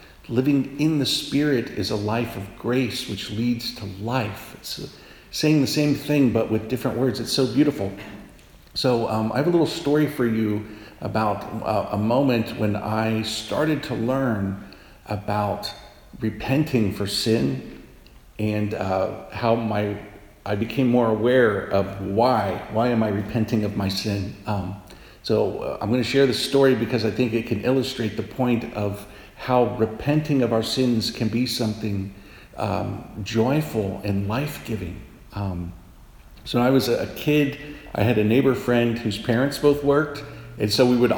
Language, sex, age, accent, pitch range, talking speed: English, male, 50-69, American, 105-125 Hz, 165 wpm